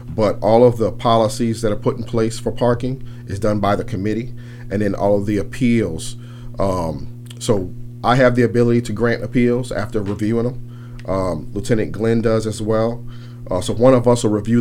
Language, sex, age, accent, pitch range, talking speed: English, male, 40-59, American, 100-120 Hz, 195 wpm